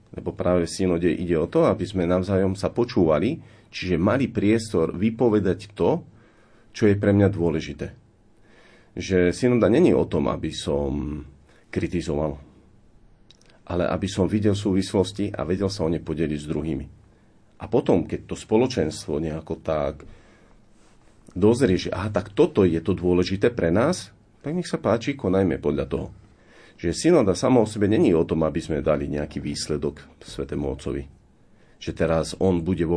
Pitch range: 75-105 Hz